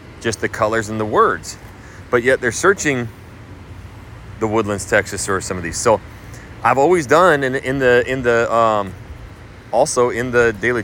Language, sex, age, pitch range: English, male, 30-49, 105-125 Hz